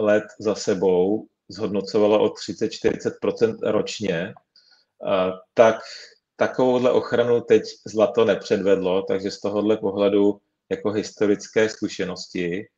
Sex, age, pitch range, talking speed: male, 40-59, 100-115 Hz, 95 wpm